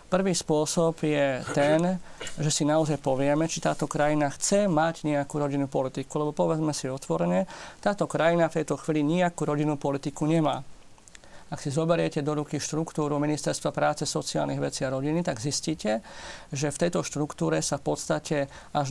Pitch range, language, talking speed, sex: 145-165 Hz, Slovak, 160 wpm, male